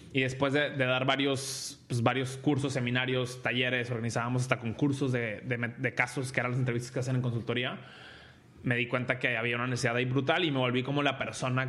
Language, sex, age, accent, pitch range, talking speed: Spanish, male, 20-39, Mexican, 120-135 Hz, 210 wpm